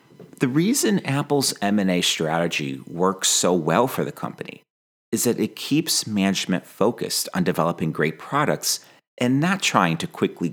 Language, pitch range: English, 80-110 Hz